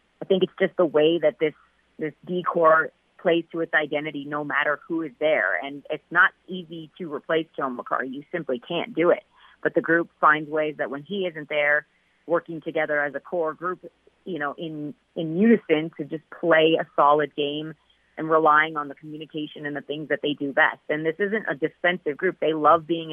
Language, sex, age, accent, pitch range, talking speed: English, female, 30-49, American, 145-165 Hz, 210 wpm